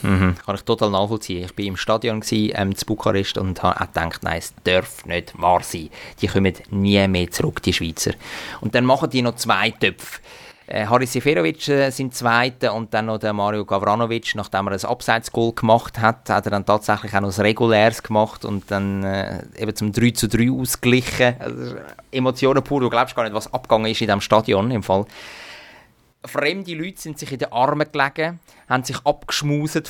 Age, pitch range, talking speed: 30-49, 100-125 Hz, 195 wpm